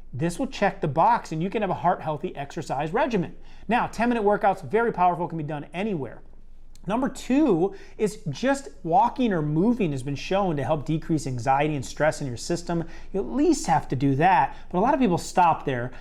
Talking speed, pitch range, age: 205 wpm, 150-200 Hz, 30-49